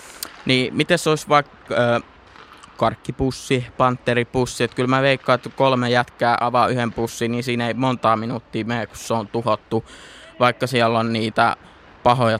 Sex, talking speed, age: male, 160 wpm, 20-39